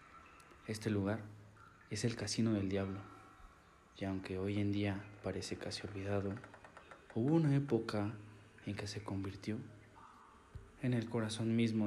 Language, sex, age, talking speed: Spanish, male, 30-49, 130 wpm